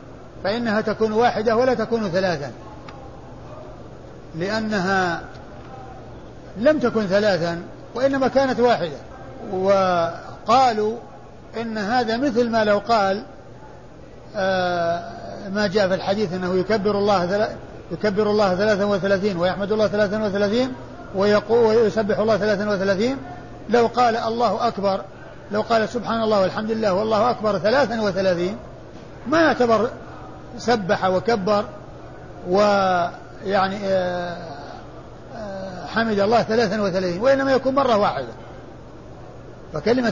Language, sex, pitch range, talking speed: Arabic, male, 195-235 Hz, 100 wpm